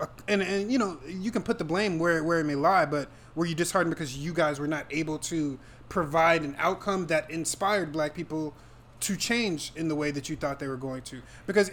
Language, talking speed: English, 230 wpm